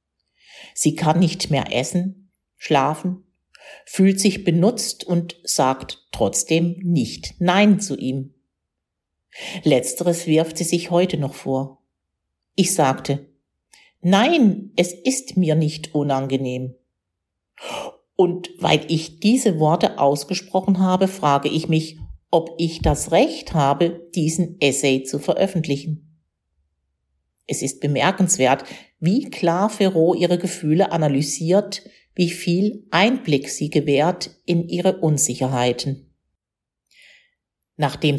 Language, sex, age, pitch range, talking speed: German, female, 50-69, 135-185 Hz, 105 wpm